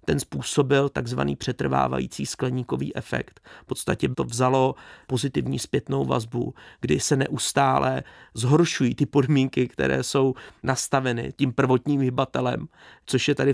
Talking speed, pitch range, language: 125 wpm, 105-140 Hz, Czech